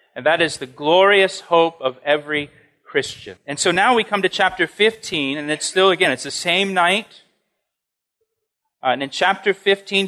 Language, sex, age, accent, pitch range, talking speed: English, male, 40-59, American, 155-195 Hz, 180 wpm